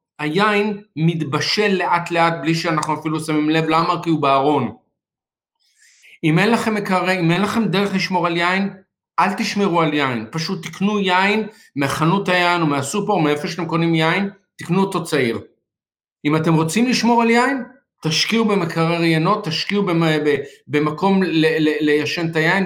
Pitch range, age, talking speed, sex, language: 155-195 Hz, 50-69, 150 wpm, male, Hebrew